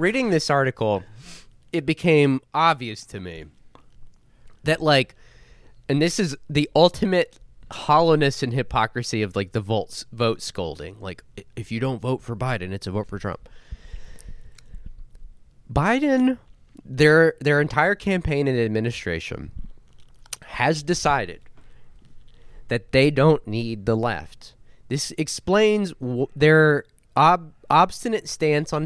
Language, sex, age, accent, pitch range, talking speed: English, male, 20-39, American, 115-165 Hz, 120 wpm